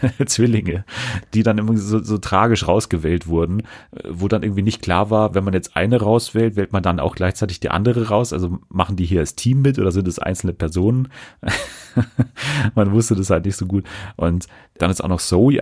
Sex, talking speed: male, 205 wpm